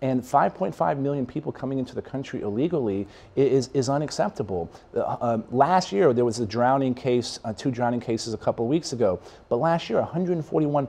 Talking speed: 180 wpm